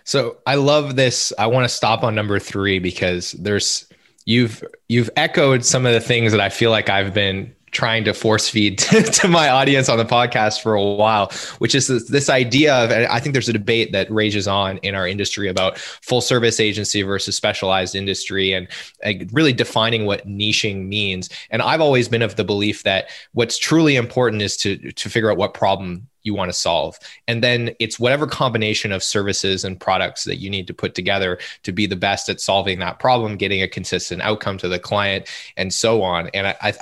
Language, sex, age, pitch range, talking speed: English, male, 20-39, 95-115 Hz, 205 wpm